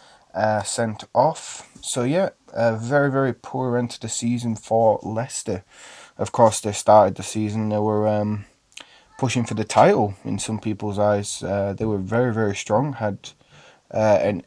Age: 20-39